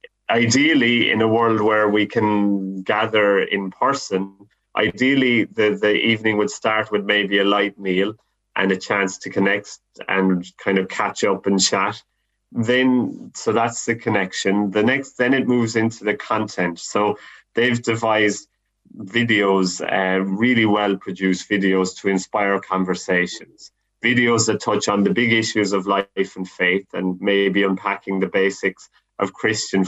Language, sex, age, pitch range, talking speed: English, male, 30-49, 95-115 Hz, 155 wpm